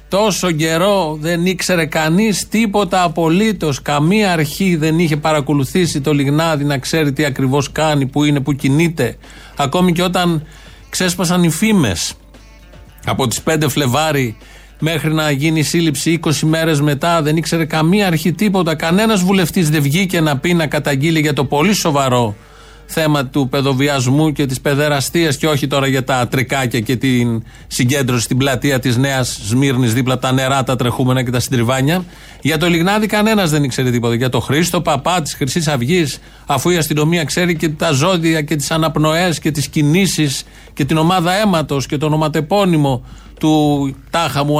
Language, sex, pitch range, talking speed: Greek, male, 140-170 Hz, 165 wpm